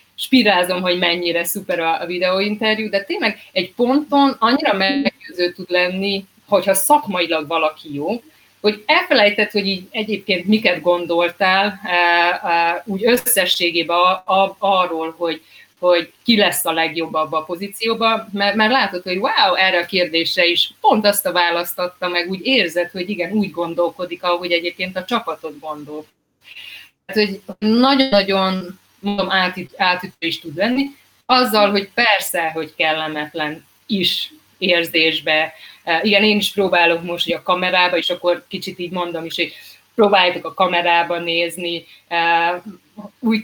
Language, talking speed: Hungarian, 135 wpm